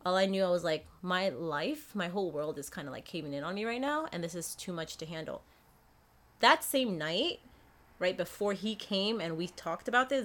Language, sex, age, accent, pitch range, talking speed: English, female, 30-49, American, 165-200 Hz, 235 wpm